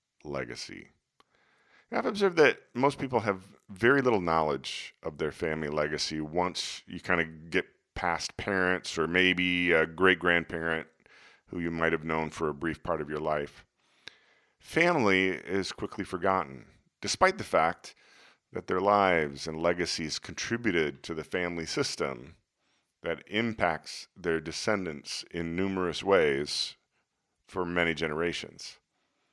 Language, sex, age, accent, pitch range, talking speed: English, male, 40-59, American, 80-95 Hz, 130 wpm